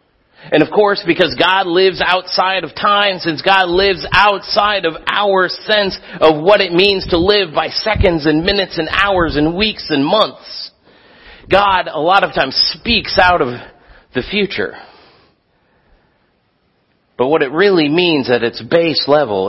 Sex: male